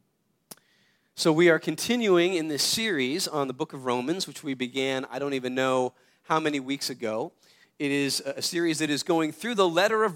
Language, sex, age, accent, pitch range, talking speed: English, male, 40-59, American, 150-185 Hz, 200 wpm